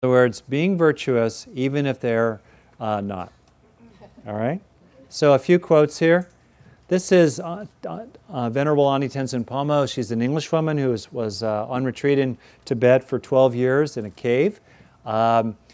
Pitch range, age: 115-140 Hz, 40-59